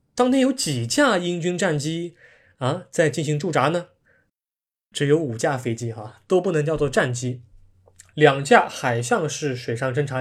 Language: Chinese